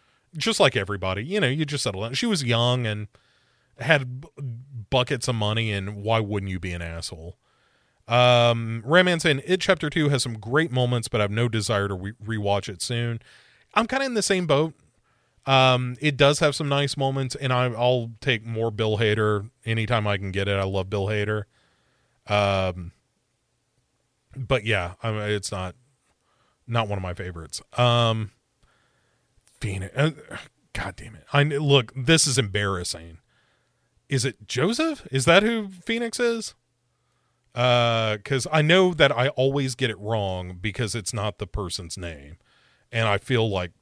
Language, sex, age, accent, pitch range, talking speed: English, male, 30-49, American, 100-135 Hz, 170 wpm